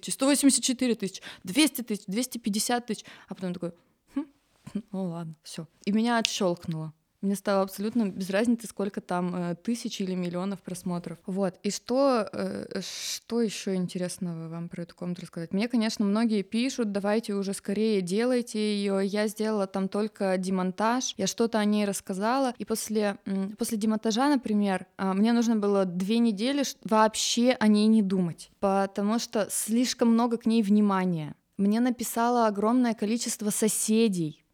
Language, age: Russian, 20-39